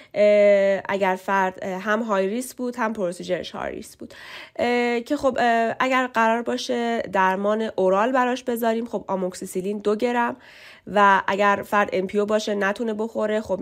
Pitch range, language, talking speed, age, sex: 190-235 Hz, Persian, 140 wpm, 20-39, female